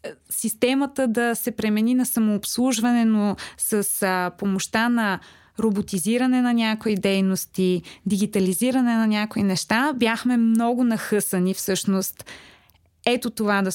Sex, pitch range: female, 205-260 Hz